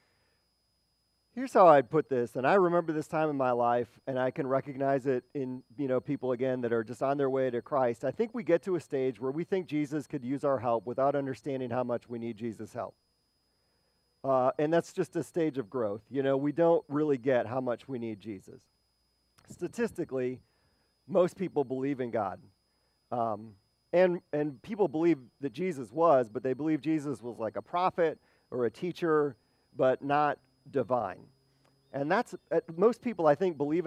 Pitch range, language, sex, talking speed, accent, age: 125-160 Hz, English, male, 195 wpm, American, 40-59